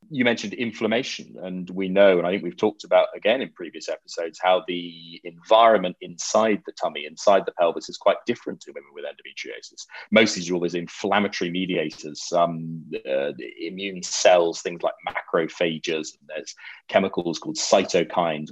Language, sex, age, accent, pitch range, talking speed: English, male, 30-49, British, 90-115 Hz, 150 wpm